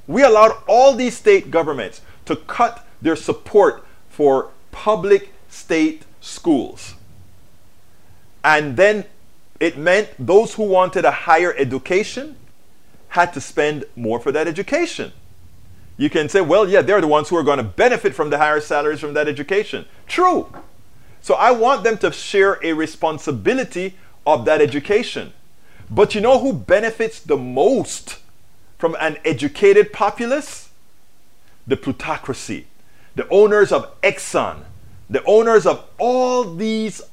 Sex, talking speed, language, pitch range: male, 135 wpm, English, 145-225 Hz